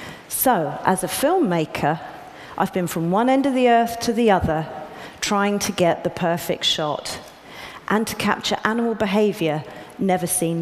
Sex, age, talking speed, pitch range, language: female, 40-59, 160 wpm, 170-230 Hz, Arabic